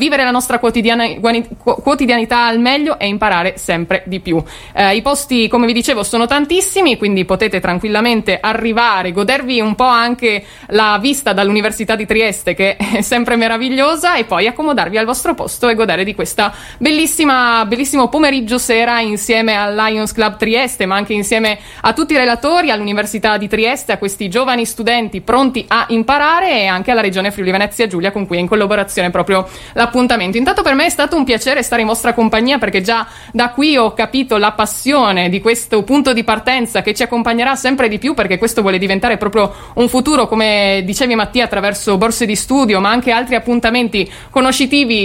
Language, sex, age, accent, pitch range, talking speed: Italian, female, 20-39, native, 205-250 Hz, 180 wpm